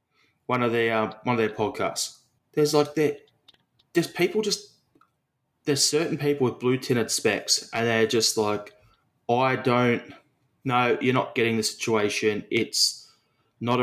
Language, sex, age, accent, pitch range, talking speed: English, male, 20-39, Australian, 110-135 Hz, 150 wpm